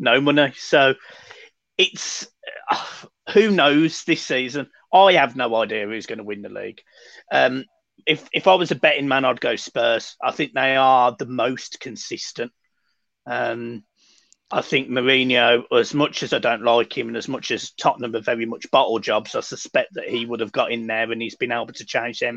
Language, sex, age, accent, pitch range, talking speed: English, male, 30-49, British, 125-160 Hz, 195 wpm